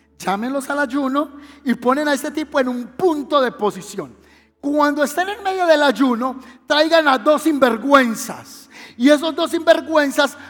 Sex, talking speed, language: male, 155 wpm, Spanish